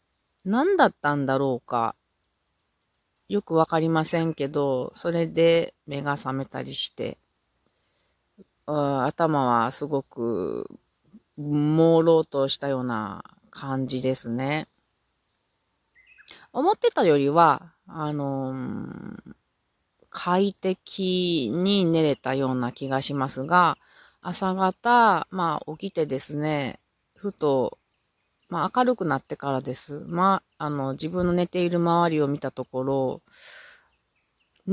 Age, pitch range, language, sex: 30-49, 135-180 Hz, Japanese, female